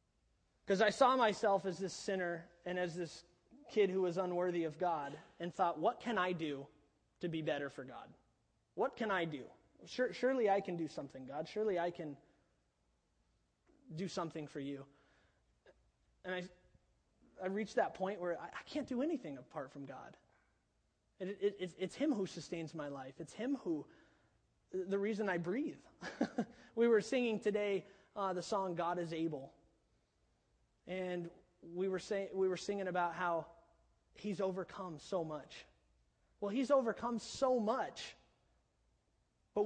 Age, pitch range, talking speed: 20-39, 160-205 Hz, 150 wpm